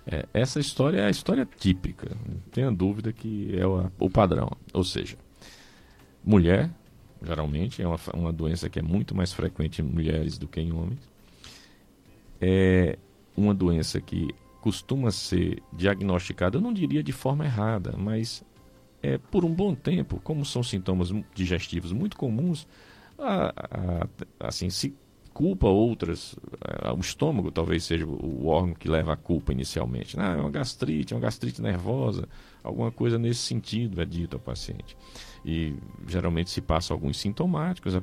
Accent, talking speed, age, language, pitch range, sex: Brazilian, 155 wpm, 50-69, Portuguese, 80-110 Hz, male